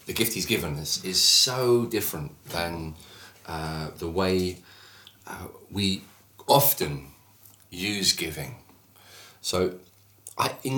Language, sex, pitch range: English, male, 90-105 Hz